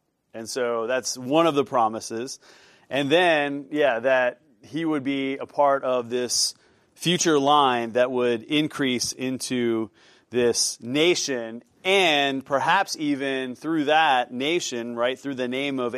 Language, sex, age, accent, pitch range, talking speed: English, male, 30-49, American, 125-155 Hz, 140 wpm